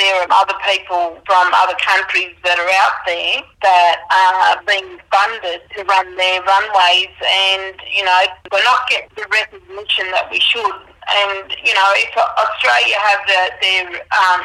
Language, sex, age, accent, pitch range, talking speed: English, female, 40-59, Australian, 185-210 Hz, 165 wpm